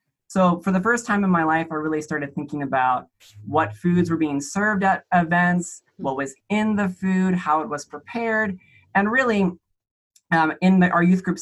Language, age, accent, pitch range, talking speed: English, 20-39, American, 155-190 Hz, 195 wpm